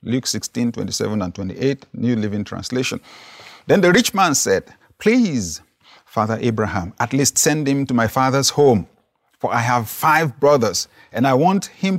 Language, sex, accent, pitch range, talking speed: English, male, Nigerian, 115-145 Hz, 165 wpm